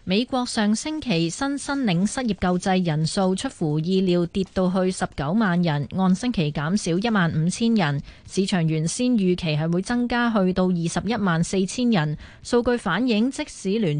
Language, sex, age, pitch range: Chinese, female, 20-39, 170-220 Hz